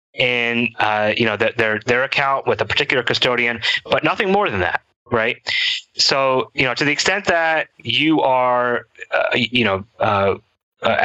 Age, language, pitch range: 30-49, English, 105-125 Hz